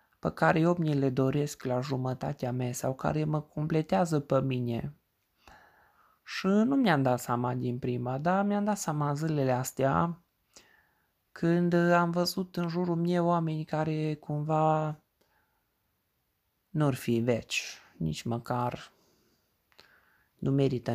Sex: male